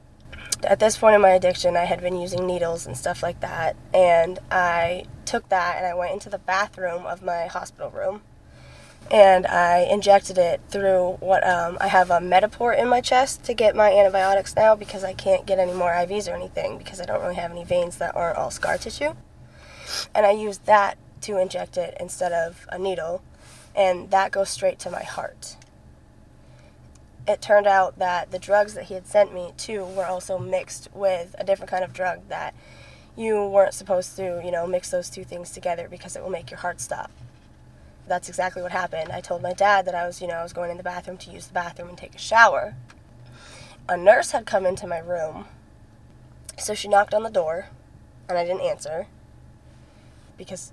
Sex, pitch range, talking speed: female, 175-200 Hz, 205 wpm